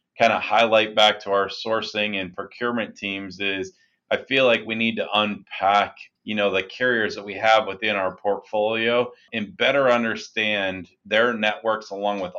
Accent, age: American, 30-49